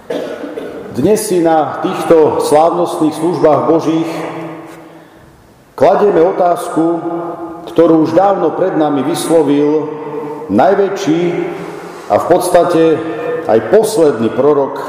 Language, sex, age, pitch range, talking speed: Slovak, male, 50-69, 145-175 Hz, 90 wpm